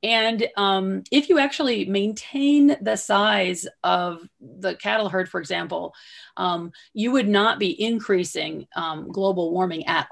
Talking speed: 140 wpm